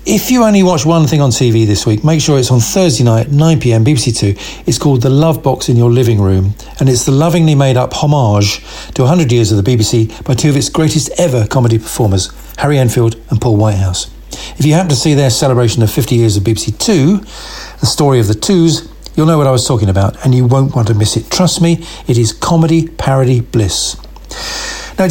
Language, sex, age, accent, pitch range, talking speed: English, male, 50-69, British, 115-150 Hz, 220 wpm